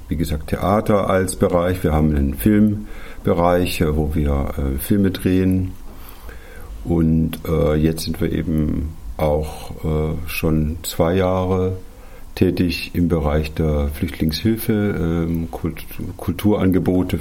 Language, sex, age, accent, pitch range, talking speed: German, male, 50-69, German, 80-95 Hz, 100 wpm